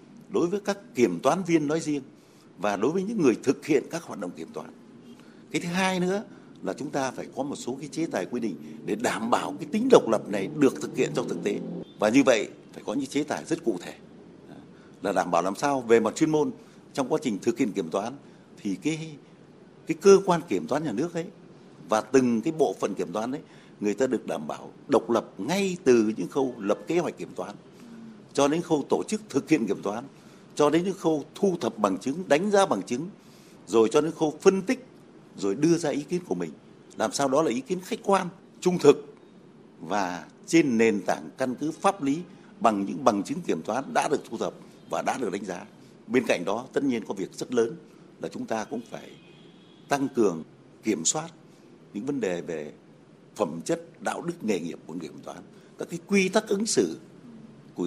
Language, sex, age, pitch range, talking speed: Vietnamese, male, 60-79, 140-195 Hz, 225 wpm